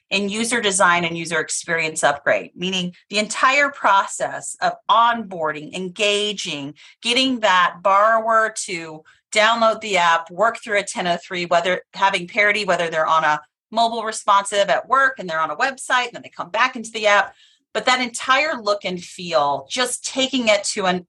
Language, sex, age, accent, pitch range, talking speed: English, female, 30-49, American, 170-220 Hz, 170 wpm